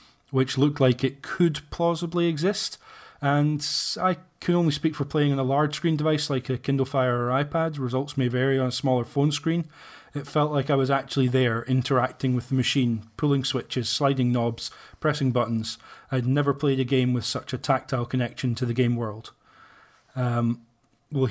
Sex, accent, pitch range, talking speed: male, British, 125-145 Hz, 185 wpm